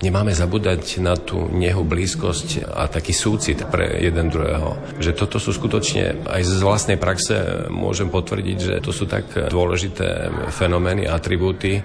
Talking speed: 145 wpm